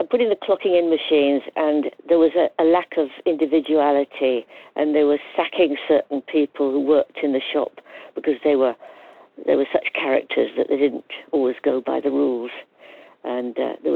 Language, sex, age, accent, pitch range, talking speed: English, female, 60-79, British, 140-175 Hz, 185 wpm